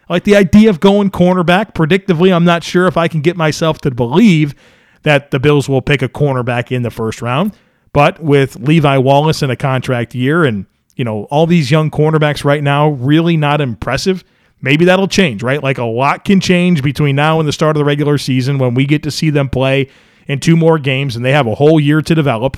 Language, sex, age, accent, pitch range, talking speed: English, male, 40-59, American, 140-175 Hz, 225 wpm